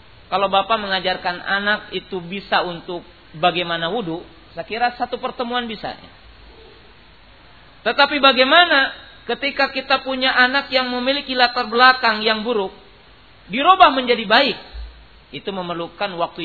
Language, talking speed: Malay, 115 wpm